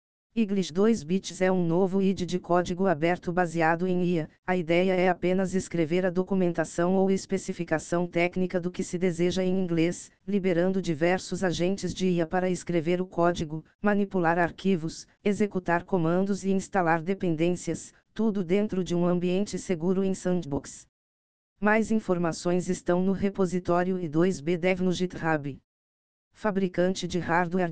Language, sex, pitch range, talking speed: Portuguese, female, 170-190 Hz, 140 wpm